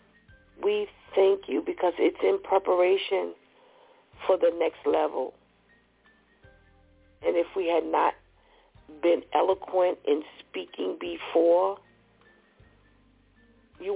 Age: 40-59